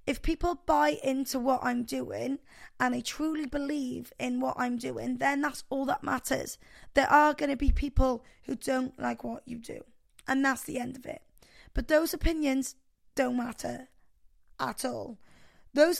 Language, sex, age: English, female, 20-39